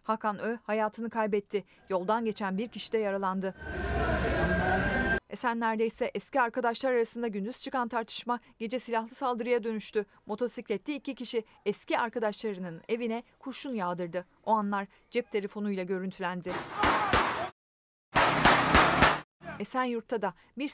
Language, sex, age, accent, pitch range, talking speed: Turkish, female, 30-49, native, 200-240 Hz, 110 wpm